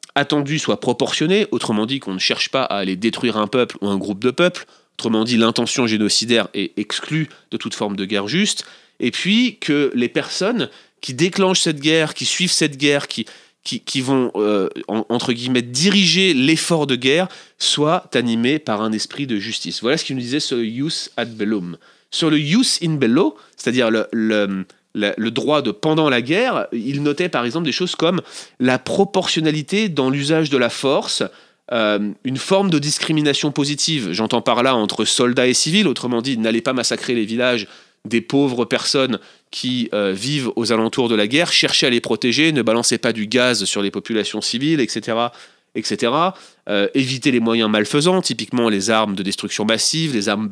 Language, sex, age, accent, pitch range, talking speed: French, male, 30-49, French, 110-155 Hz, 190 wpm